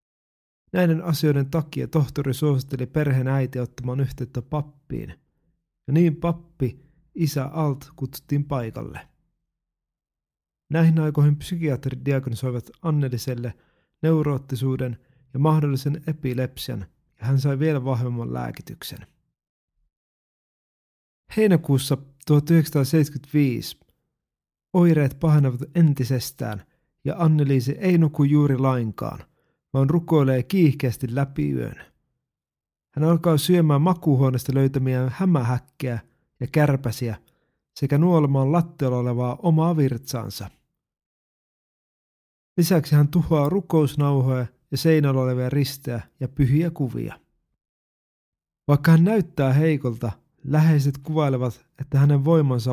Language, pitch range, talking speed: Finnish, 125-155 Hz, 95 wpm